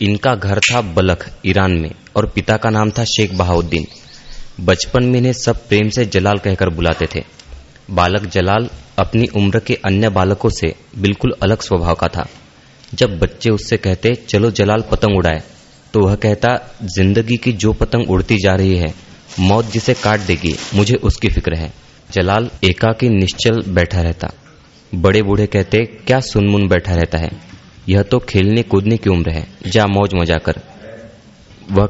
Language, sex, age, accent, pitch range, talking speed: Hindi, male, 30-49, native, 95-115 Hz, 165 wpm